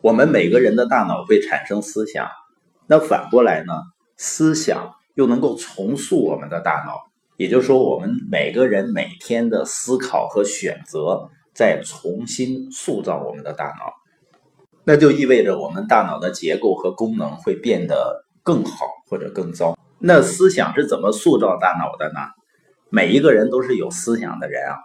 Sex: male